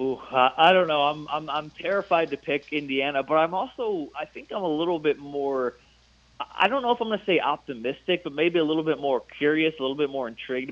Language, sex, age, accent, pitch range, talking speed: English, male, 30-49, American, 125-150 Hz, 235 wpm